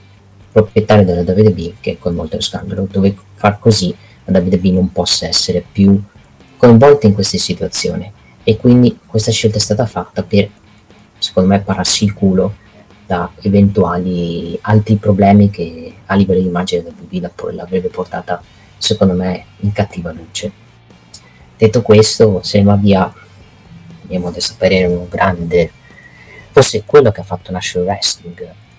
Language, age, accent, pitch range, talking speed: Italian, 30-49, native, 90-105 Hz, 155 wpm